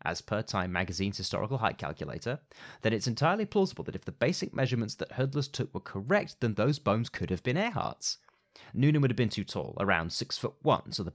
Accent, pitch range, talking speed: British, 95-135 Hz, 215 wpm